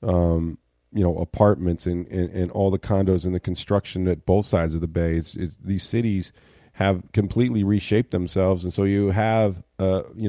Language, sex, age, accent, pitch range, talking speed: English, male, 40-59, American, 90-110 Hz, 190 wpm